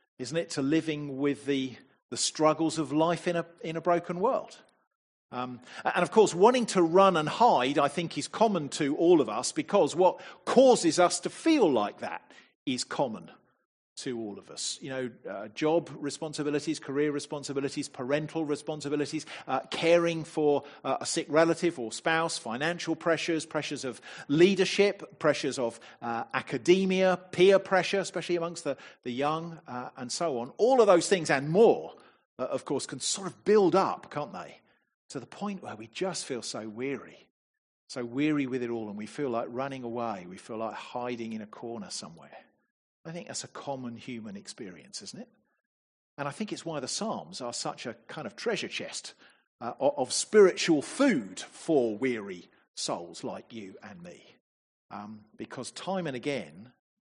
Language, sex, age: English, male, 40-59